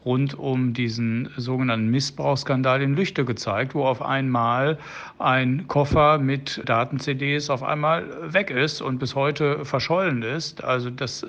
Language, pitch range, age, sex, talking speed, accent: German, 115-140 Hz, 60-79, male, 140 wpm, German